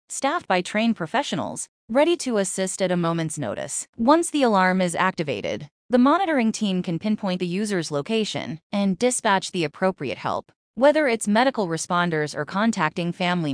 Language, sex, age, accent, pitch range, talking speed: English, female, 20-39, American, 170-225 Hz, 160 wpm